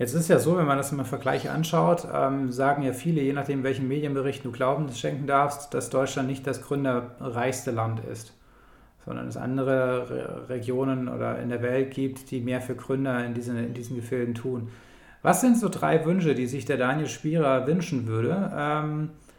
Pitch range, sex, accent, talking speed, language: 120-140 Hz, male, German, 200 wpm, German